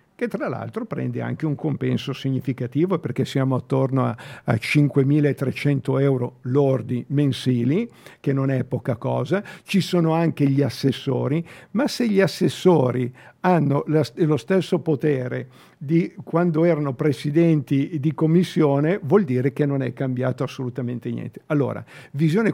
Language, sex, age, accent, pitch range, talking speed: Italian, male, 50-69, native, 130-170 Hz, 135 wpm